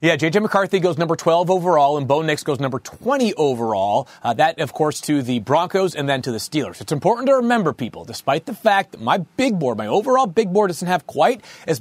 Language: English